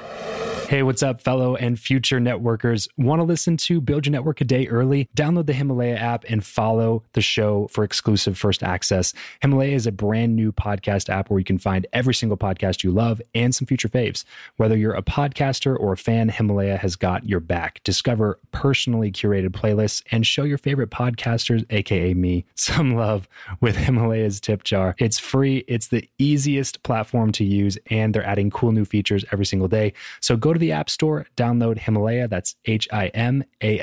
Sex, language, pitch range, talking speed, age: male, English, 100-125 Hz, 190 wpm, 20-39